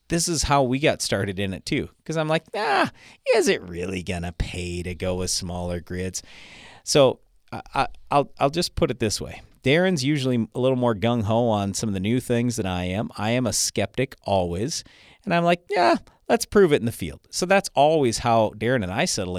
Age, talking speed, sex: 40-59, 215 wpm, male